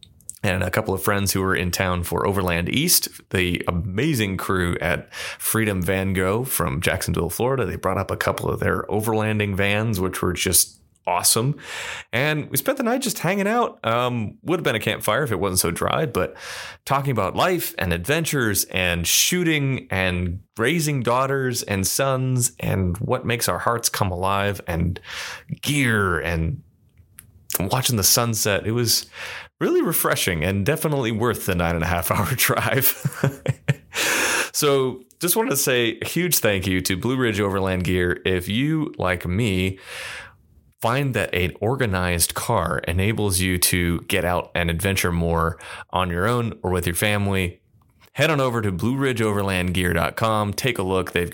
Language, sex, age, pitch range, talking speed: English, male, 30-49, 90-125 Hz, 165 wpm